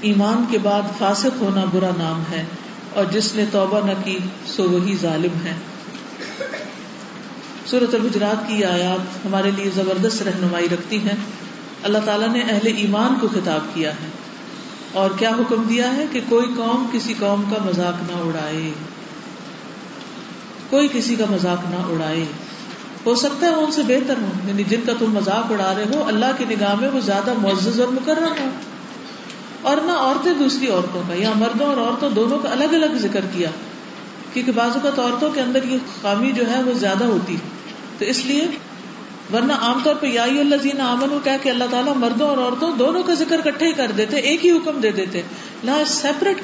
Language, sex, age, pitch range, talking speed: Urdu, female, 40-59, 200-265 Hz, 190 wpm